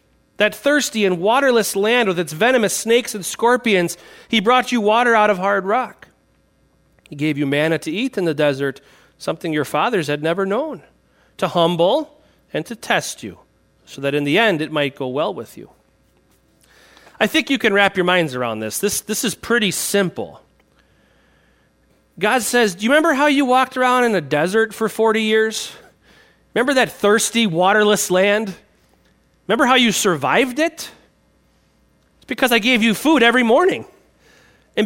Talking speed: 170 wpm